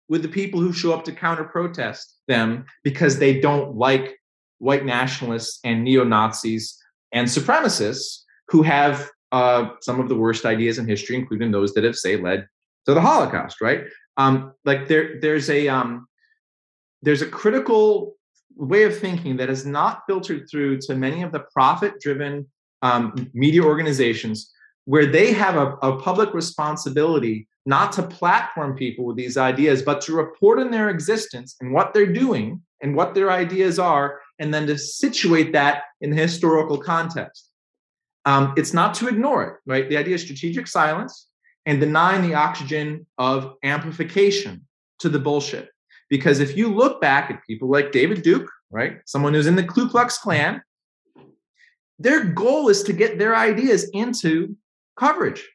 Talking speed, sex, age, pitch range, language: 160 wpm, male, 30-49, 135-185 Hz, English